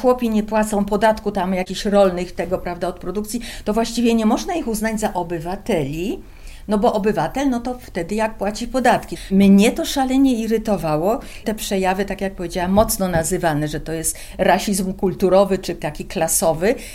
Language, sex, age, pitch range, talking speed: Polish, female, 50-69, 185-235 Hz, 165 wpm